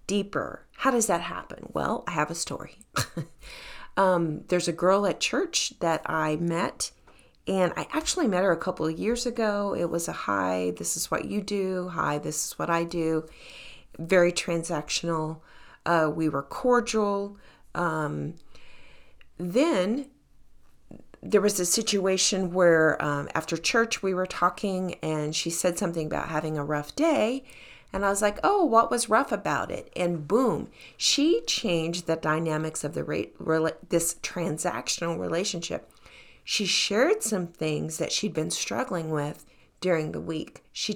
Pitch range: 160-210 Hz